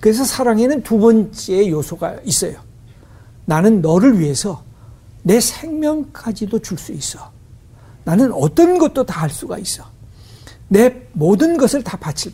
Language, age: Korean, 60-79